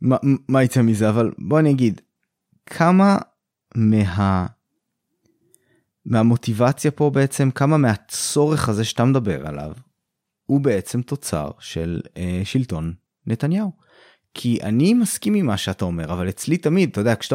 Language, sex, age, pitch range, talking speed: Hebrew, male, 20-39, 100-140 Hz, 130 wpm